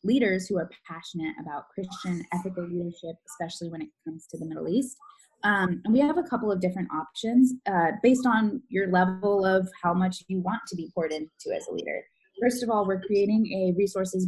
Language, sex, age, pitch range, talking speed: English, female, 20-39, 175-220 Hz, 205 wpm